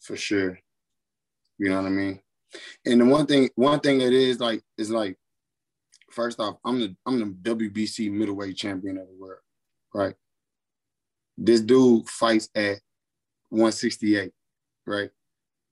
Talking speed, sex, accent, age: 140 wpm, male, American, 20-39